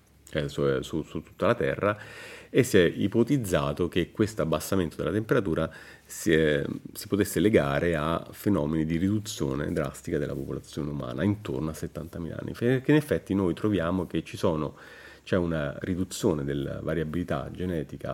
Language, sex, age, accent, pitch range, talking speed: Italian, male, 30-49, native, 75-100 Hz, 140 wpm